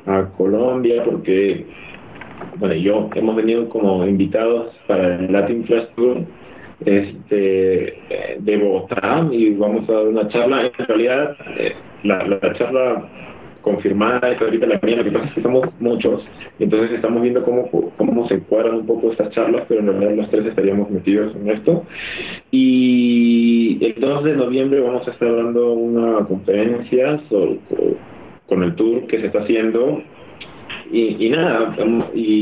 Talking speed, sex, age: 135 wpm, male, 30-49